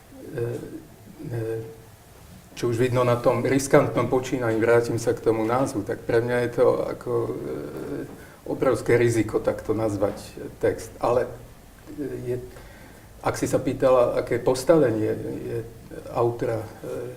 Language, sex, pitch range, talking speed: Slovak, male, 115-135 Hz, 110 wpm